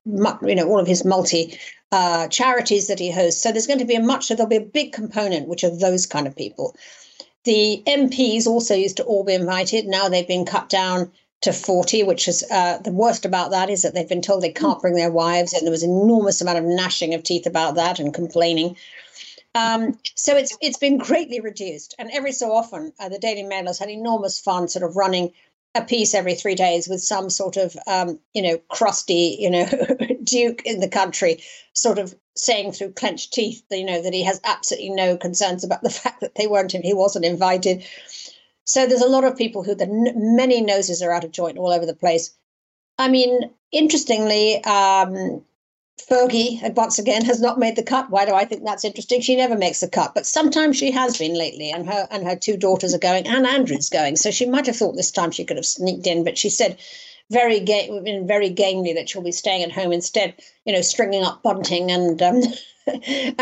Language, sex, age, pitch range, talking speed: English, female, 50-69, 180-235 Hz, 215 wpm